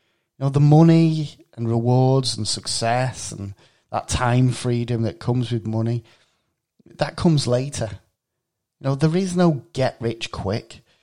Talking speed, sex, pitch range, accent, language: 135 wpm, male, 115-145 Hz, British, English